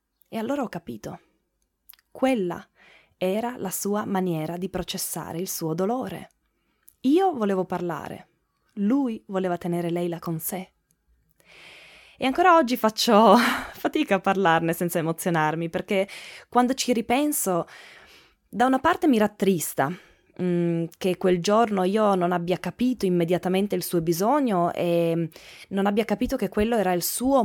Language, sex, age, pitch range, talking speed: Italian, female, 20-39, 175-225 Hz, 135 wpm